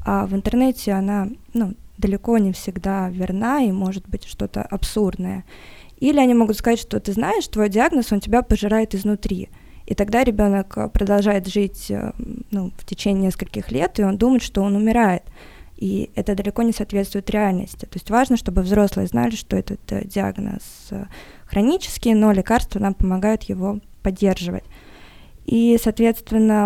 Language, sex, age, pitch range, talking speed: Russian, female, 20-39, 195-225 Hz, 150 wpm